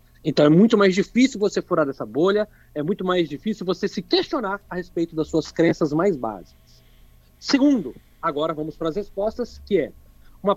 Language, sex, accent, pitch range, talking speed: Portuguese, male, Brazilian, 150-200 Hz, 180 wpm